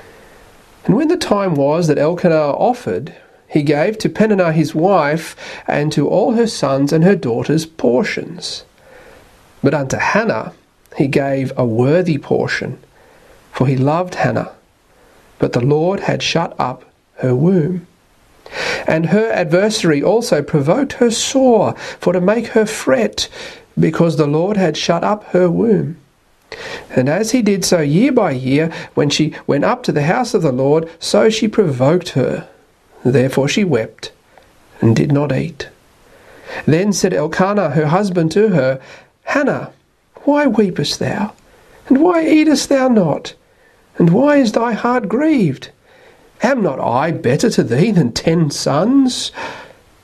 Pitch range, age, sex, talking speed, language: 150-225 Hz, 40-59, male, 145 wpm, English